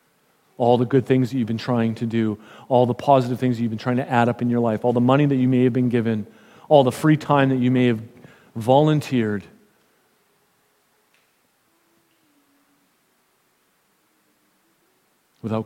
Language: English